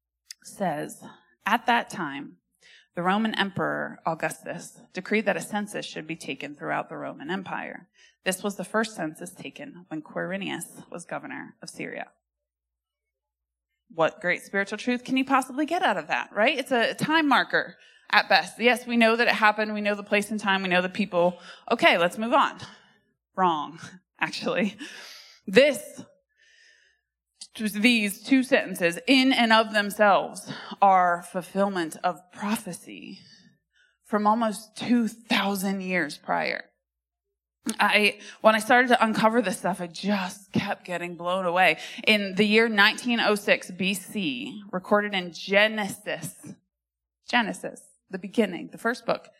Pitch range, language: 175-230 Hz, English